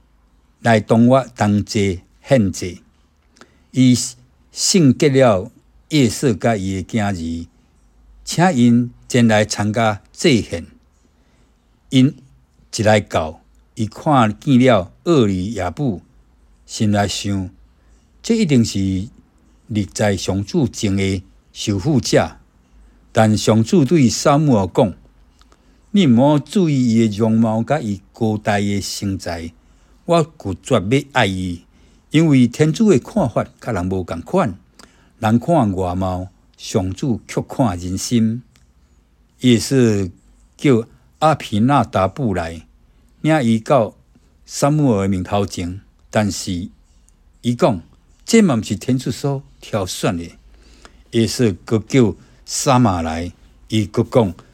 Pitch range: 85-125 Hz